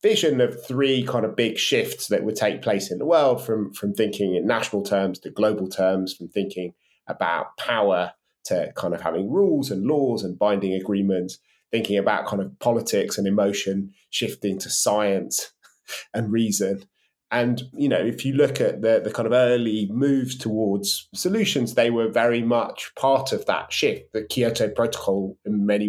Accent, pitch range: British, 95-125 Hz